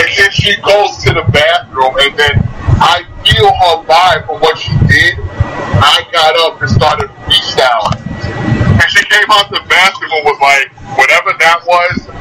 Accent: American